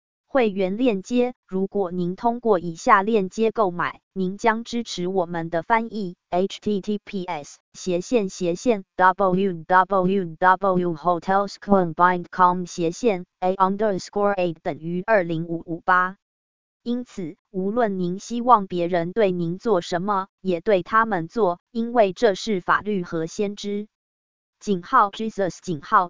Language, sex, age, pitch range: English, female, 20-39, 175-220 Hz